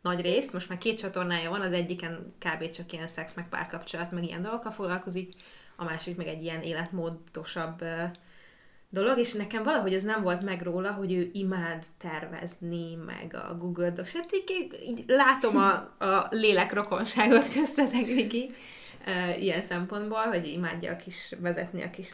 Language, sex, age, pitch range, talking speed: Hungarian, female, 20-39, 175-205 Hz, 170 wpm